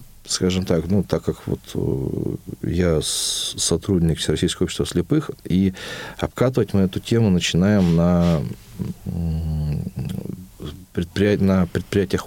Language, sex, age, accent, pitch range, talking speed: Russian, male, 40-59, native, 90-105 Hz, 100 wpm